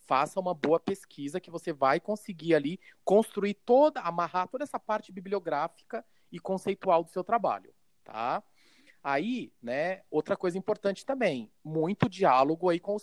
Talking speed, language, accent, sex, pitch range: 150 wpm, Portuguese, Brazilian, male, 145-215 Hz